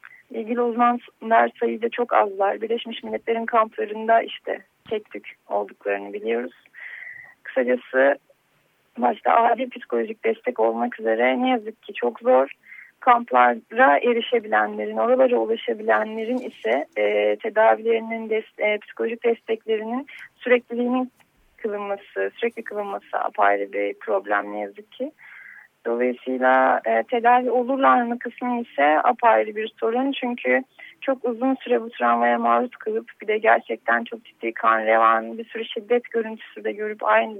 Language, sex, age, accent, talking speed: Turkish, female, 30-49, native, 120 wpm